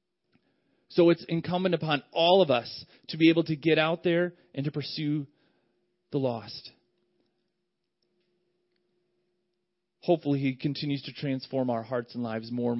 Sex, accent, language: male, American, English